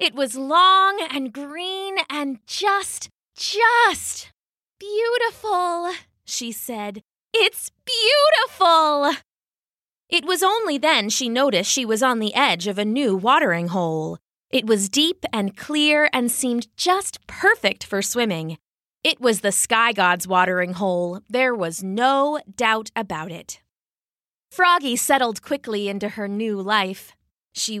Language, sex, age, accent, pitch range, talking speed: English, female, 20-39, American, 205-310 Hz, 130 wpm